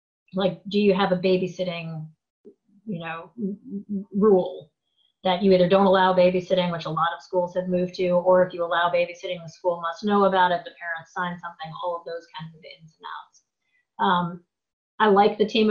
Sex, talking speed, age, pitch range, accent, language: female, 195 wpm, 30-49, 170-200 Hz, American, English